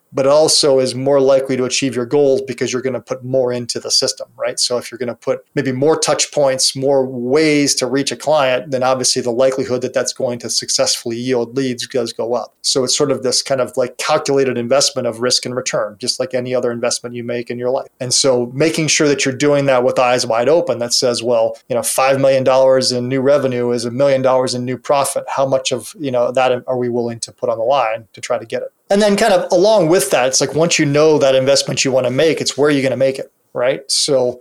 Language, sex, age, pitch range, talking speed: English, male, 30-49, 125-140 Hz, 260 wpm